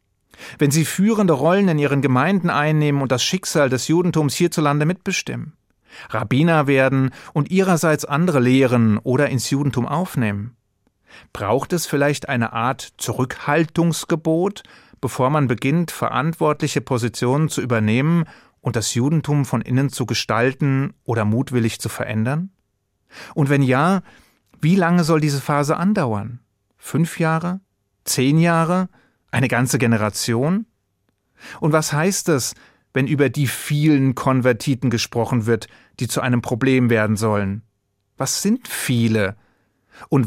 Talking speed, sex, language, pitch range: 130 wpm, male, German, 120-160 Hz